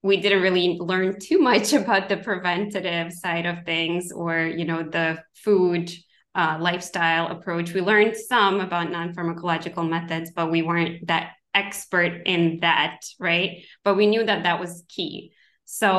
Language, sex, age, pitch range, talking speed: English, female, 20-39, 165-195 Hz, 160 wpm